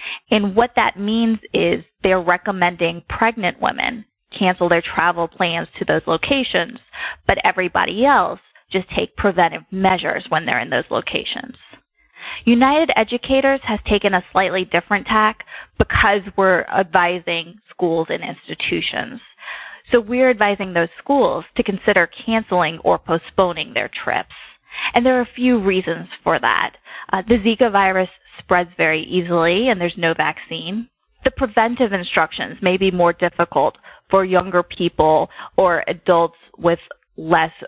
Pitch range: 170-220 Hz